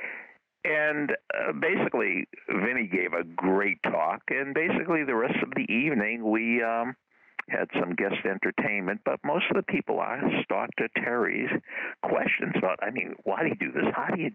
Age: 60-79